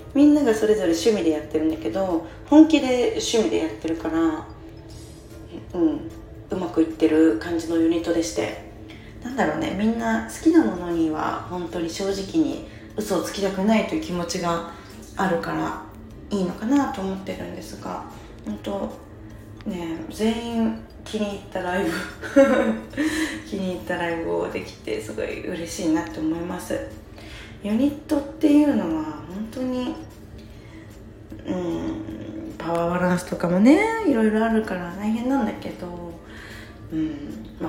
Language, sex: Japanese, female